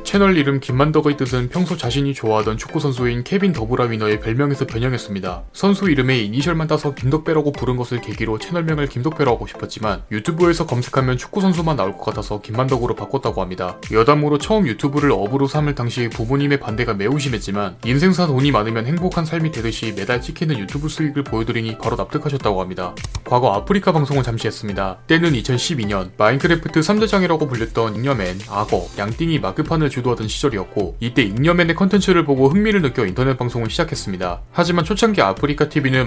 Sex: male